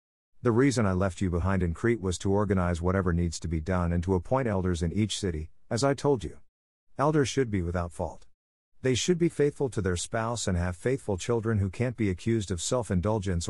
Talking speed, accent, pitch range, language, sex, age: 220 wpm, American, 90-115 Hz, English, male, 50-69